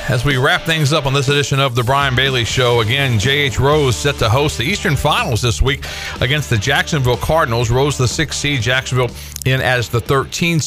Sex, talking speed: male, 210 wpm